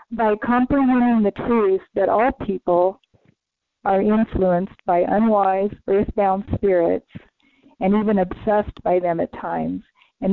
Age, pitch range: 40-59, 190-230 Hz